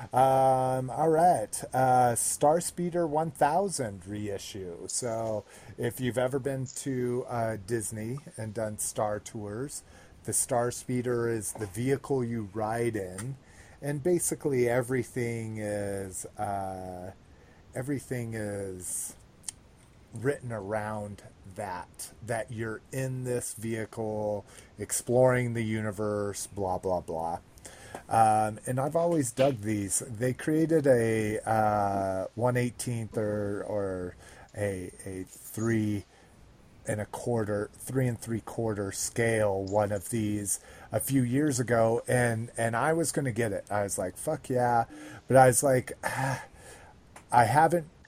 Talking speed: 125 wpm